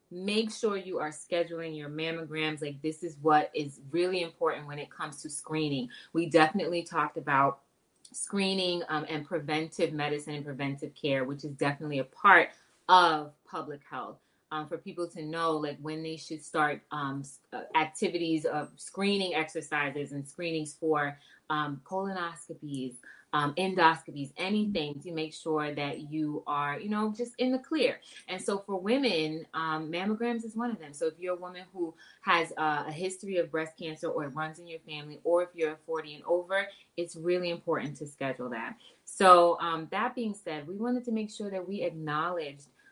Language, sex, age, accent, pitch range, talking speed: English, female, 20-39, American, 150-190 Hz, 180 wpm